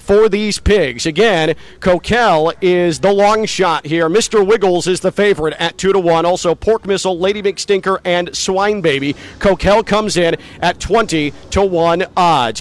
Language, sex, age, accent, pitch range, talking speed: English, male, 40-59, American, 155-200 Hz, 165 wpm